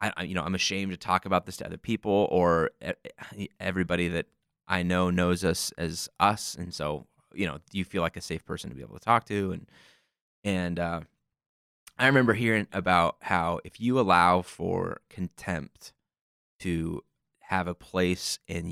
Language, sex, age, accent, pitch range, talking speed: English, male, 20-39, American, 85-95 Hz, 180 wpm